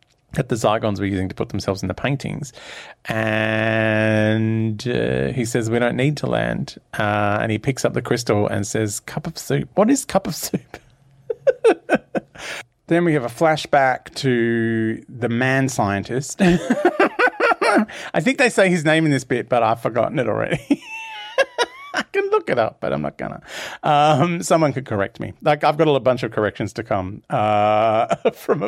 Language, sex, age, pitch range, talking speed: English, male, 40-59, 110-155 Hz, 175 wpm